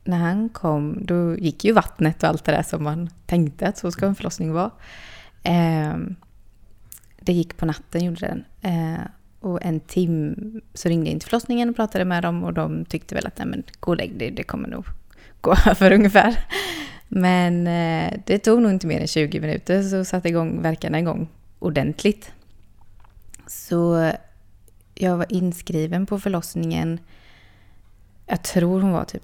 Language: Swedish